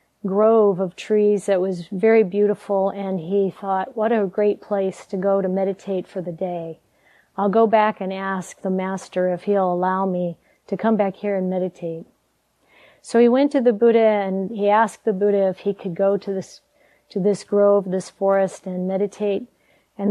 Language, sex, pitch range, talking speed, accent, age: English, female, 190-220 Hz, 190 wpm, American, 40-59